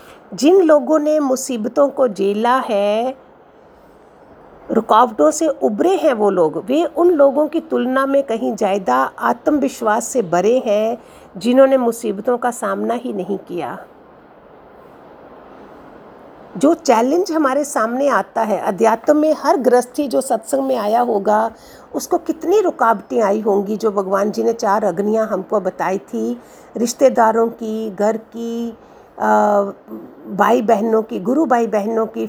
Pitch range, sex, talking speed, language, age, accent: 215-275 Hz, female, 135 wpm, Hindi, 50-69, native